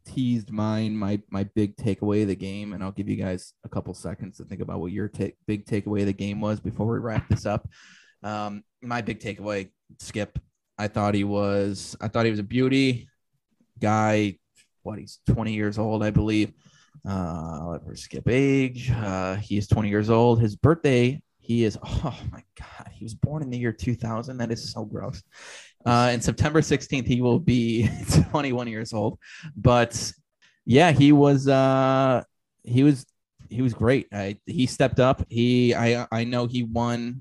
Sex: male